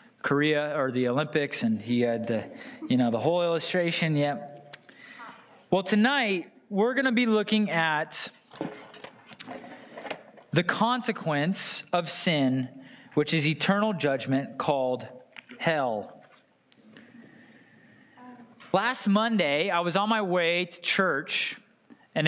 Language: English